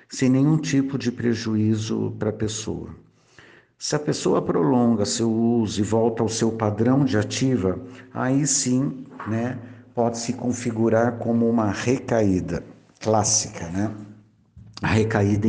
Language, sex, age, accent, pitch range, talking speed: Portuguese, male, 60-79, Brazilian, 110-130 Hz, 130 wpm